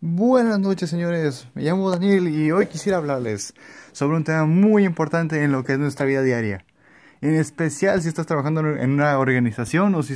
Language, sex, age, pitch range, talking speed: Spanish, male, 20-39, 140-180 Hz, 190 wpm